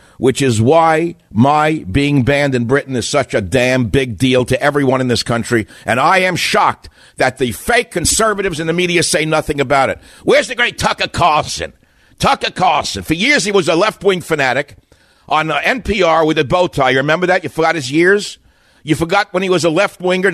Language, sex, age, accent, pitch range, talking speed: English, male, 60-79, American, 130-180 Hz, 200 wpm